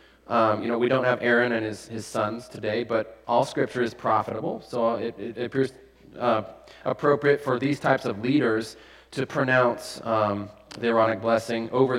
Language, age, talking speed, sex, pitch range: English, 30-49, 175 wpm, male, 115-145 Hz